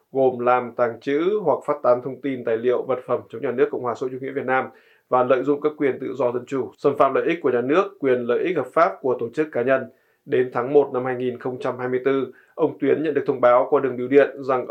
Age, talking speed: 20-39, 265 wpm